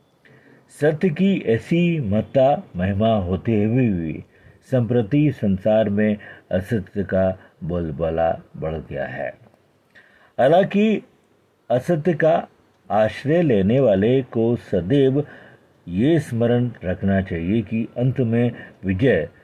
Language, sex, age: Hindi, male, 50-69